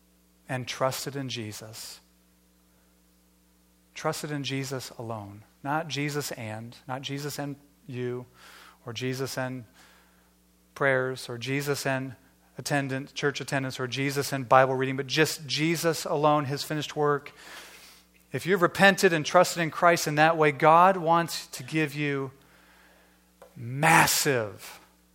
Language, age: English, 30-49